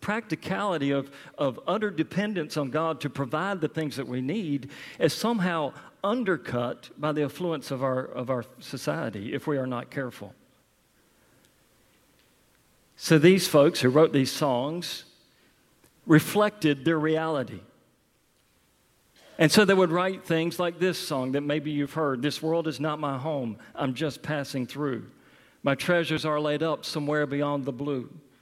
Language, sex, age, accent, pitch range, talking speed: English, male, 50-69, American, 140-175 Hz, 150 wpm